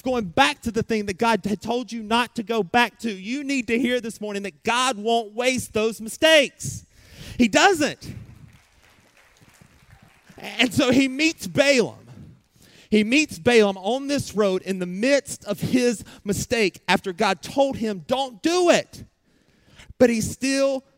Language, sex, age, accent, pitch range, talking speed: English, male, 30-49, American, 140-235 Hz, 160 wpm